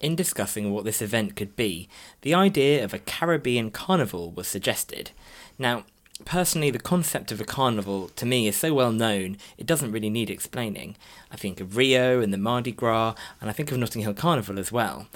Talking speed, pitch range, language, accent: 200 wpm, 105-145 Hz, English, British